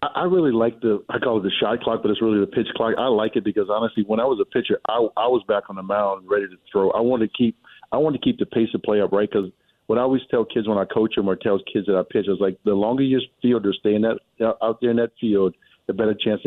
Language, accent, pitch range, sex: English, American, 105-125 Hz, male